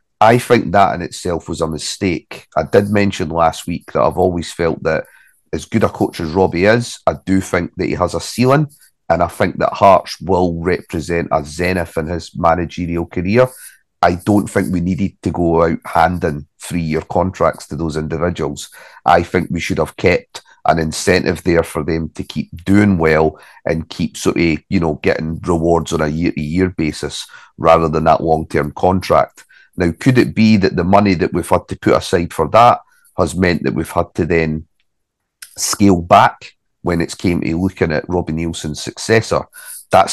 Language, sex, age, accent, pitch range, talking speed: English, male, 30-49, British, 80-95 Hz, 190 wpm